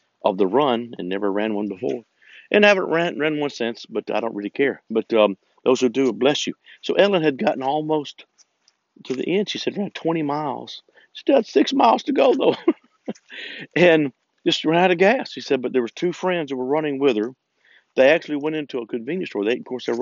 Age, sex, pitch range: 50-69, male, 115-145 Hz